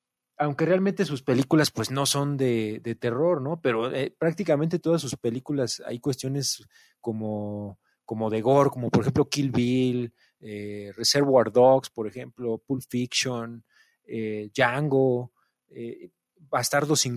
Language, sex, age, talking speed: Spanish, male, 30-49, 140 wpm